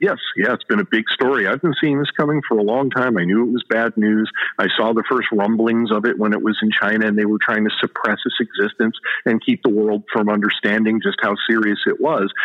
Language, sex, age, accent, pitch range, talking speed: English, male, 40-59, American, 105-130 Hz, 255 wpm